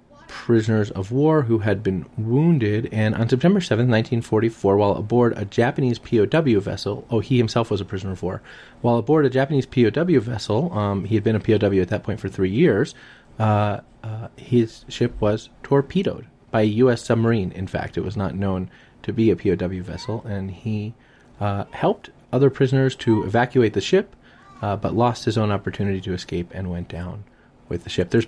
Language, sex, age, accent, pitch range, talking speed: English, male, 30-49, American, 100-125 Hz, 190 wpm